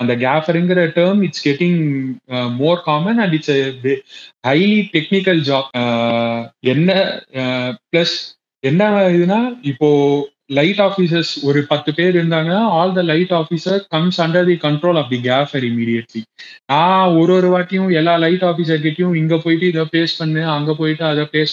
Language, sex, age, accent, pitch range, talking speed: Tamil, male, 20-39, native, 145-175 Hz, 125 wpm